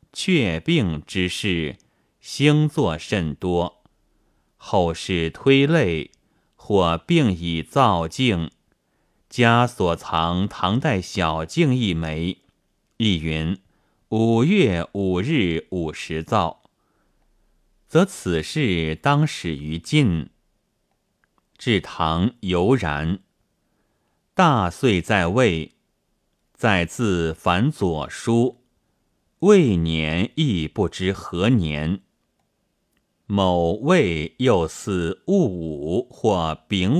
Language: Chinese